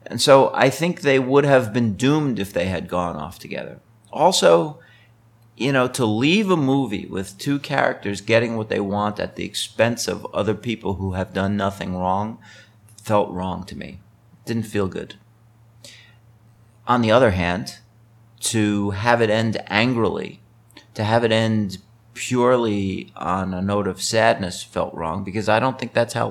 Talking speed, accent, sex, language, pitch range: 170 wpm, American, male, English, 100-115 Hz